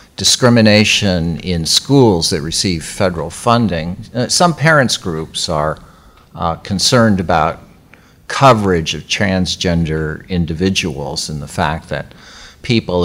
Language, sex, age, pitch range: English, male, 50-69, 85-110 Hz